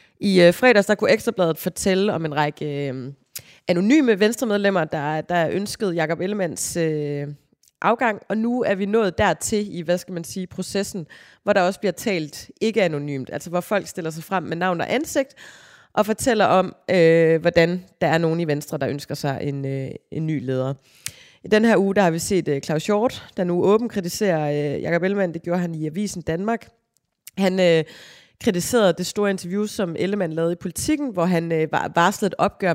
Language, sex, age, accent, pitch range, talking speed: Danish, female, 30-49, native, 150-190 Hz, 200 wpm